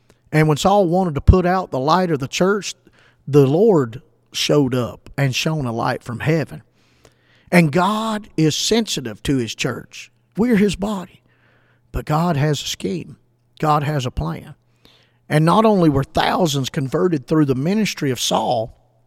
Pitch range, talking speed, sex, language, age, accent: 120-160 Hz, 165 wpm, male, English, 50-69, American